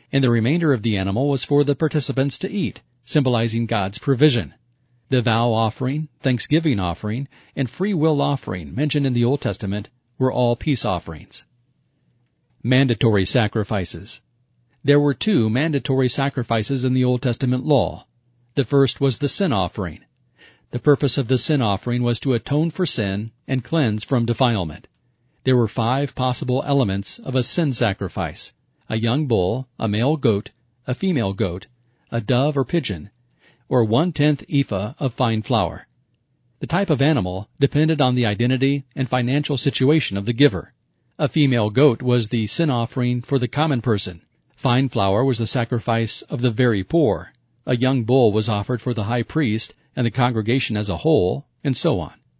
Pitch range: 115-140 Hz